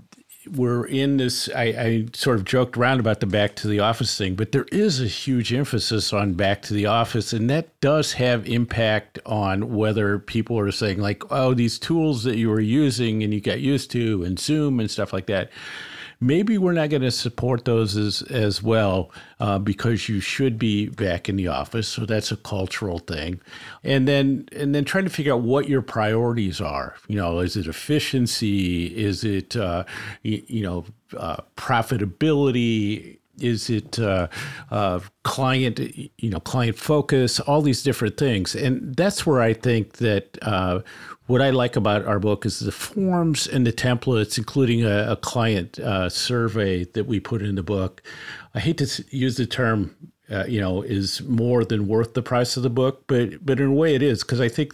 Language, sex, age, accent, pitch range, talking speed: English, male, 50-69, American, 100-130 Hz, 195 wpm